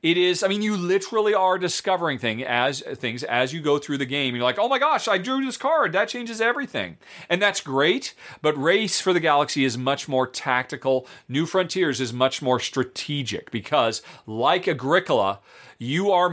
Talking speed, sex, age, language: 190 wpm, male, 40-59, English